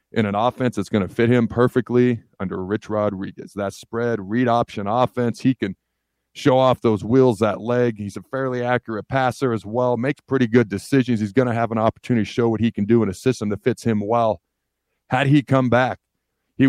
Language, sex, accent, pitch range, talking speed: English, male, American, 110-140 Hz, 215 wpm